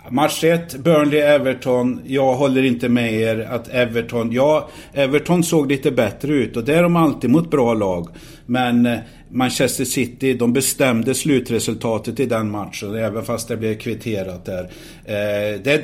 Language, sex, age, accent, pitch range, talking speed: Swedish, male, 50-69, native, 120-150 Hz, 155 wpm